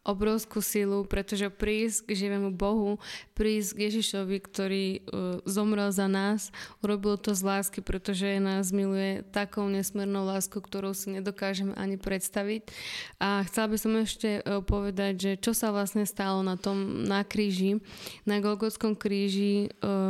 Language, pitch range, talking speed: Slovak, 195-210 Hz, 140 wpm